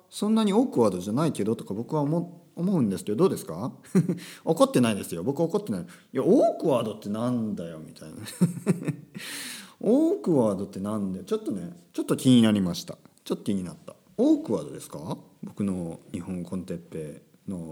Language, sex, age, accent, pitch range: Japanese, male, 40-59, native, 120-195 Hz